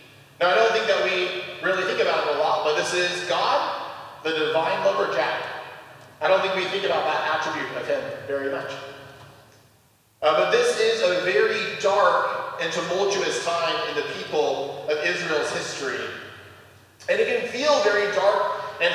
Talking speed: 175 wpm